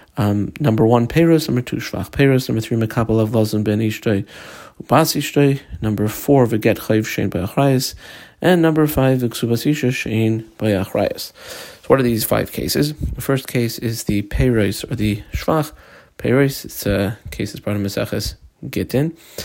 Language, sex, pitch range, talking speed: English, male, 105-125 Hz, 150 wpm